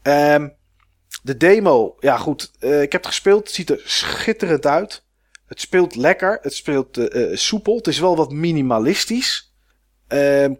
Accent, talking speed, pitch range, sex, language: Dutch, 160 wpm, 125-170 Hz, male, Dutch